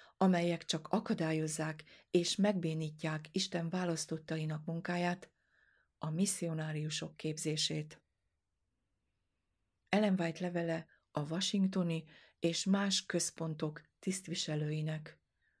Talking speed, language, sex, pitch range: 75 wpm, Hungarian, female, 155-180 Hz